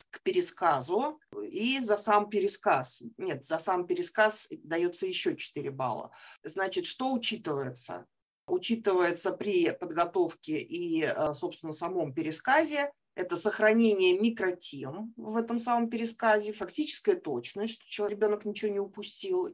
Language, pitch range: Russian, 175-265 Hz